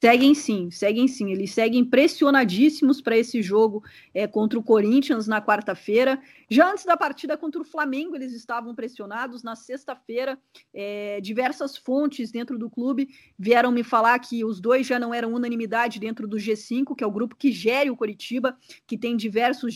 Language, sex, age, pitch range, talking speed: Portuguese, female, 20-39, 225-275 Hz, 170 wpm